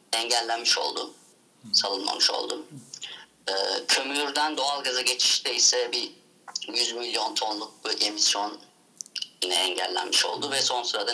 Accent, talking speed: native, 115 wpm